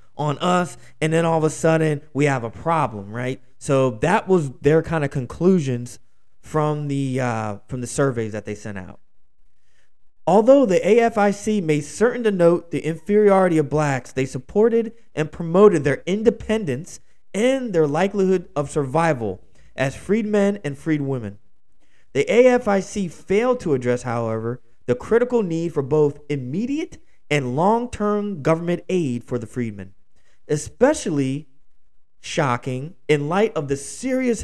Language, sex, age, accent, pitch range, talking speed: English, male, 20-39, American, 125-190 Hz, 145 wpm